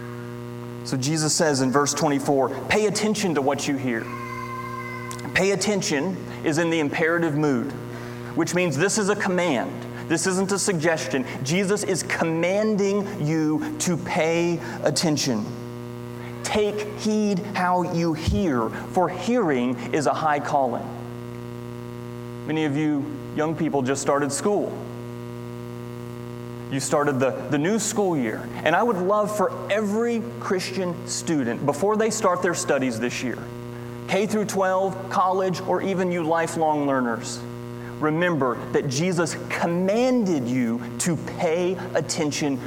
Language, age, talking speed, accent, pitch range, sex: English, 30-49, 130 wpm, American, 120-175 Hz, male